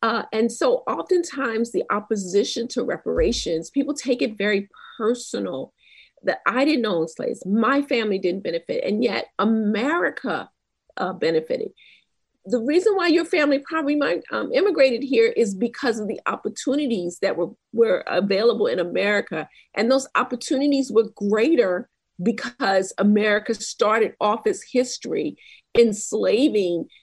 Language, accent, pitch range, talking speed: English, American, 205-295 Hz, 135 wpm